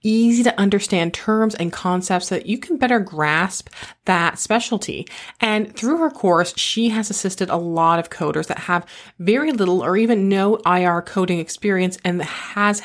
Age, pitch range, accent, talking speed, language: 30-49, 180-230 Hz, American, 170 wpm, English